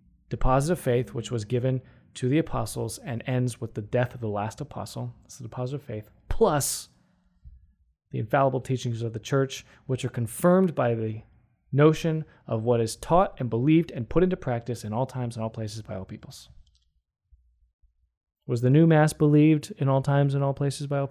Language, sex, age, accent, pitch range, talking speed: English, male, 20-39, American, 100-145 Hz, 195 wpm